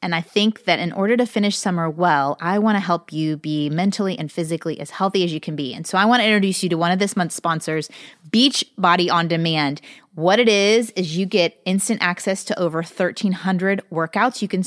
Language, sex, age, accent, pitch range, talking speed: English, female, 30-49, American, 170-225 Hz, 230 wpm